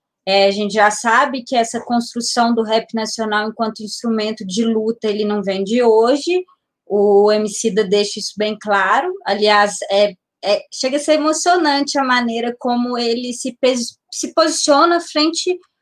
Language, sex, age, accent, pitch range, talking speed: Portuguese, female, 20-39, Brazilian, 220-275 Hz, 160 wpm